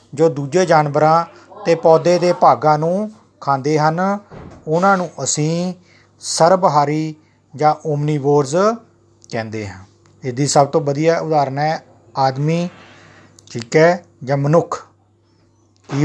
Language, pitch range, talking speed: Punjabi, 120-160 Hz, 115 wpm